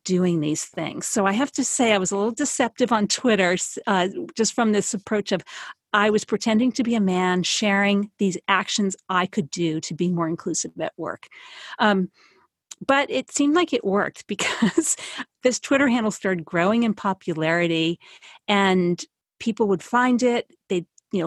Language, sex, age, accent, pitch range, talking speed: English, female, 50-69, American, 185-230 Hz, 175 wpm